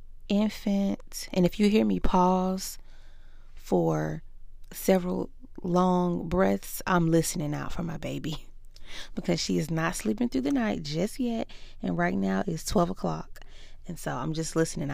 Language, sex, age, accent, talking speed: English, female, 20-39, American, 155 wpm